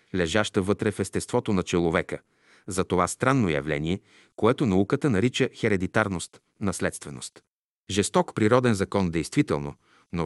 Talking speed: 115 wpm